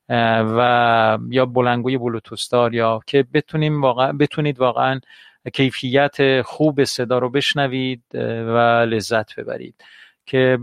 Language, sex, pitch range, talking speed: Persian, male, 125-150 Hz, 95 wpm